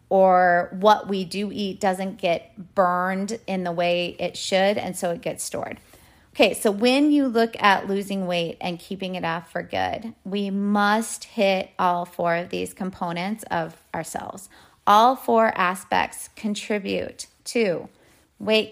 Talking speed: 155 wpm